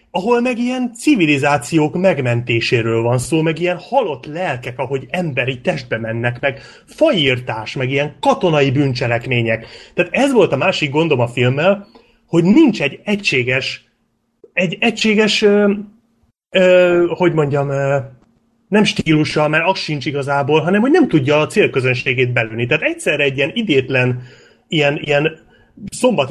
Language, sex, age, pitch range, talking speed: Hungarian, male, 30-49, 130-180 Hz, 135 wpm